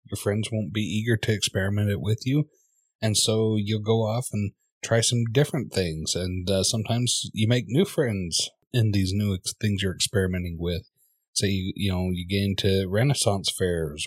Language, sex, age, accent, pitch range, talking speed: English, male, 30-49, American, 90-115 Hz, 190 wpm